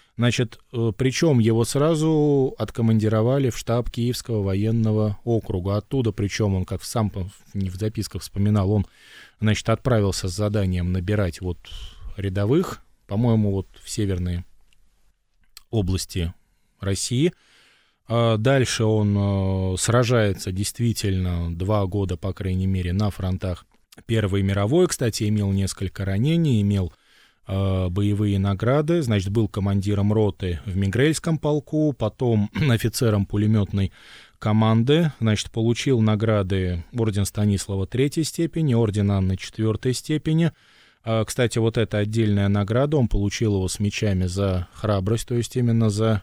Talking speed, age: 120 wpm, 20-39